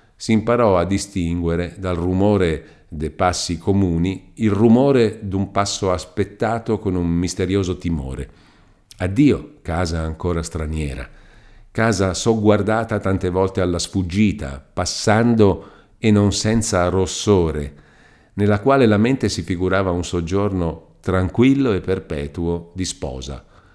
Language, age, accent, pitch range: Italian, 50-69, native, 85-105 Hz